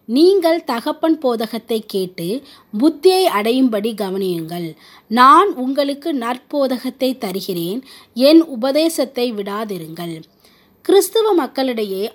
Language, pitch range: Tamil, 205-295 Hz